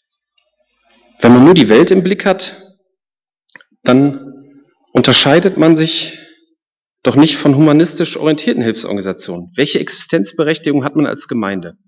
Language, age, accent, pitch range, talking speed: German, 40-59, German, 125-200 Hz, 120 wpm